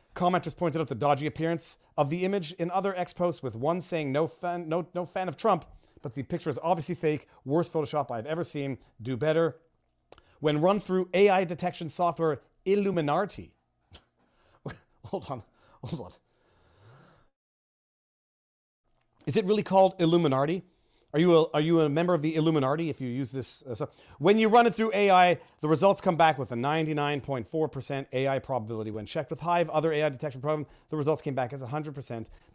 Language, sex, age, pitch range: English, male, 40-59, 135-175 Hz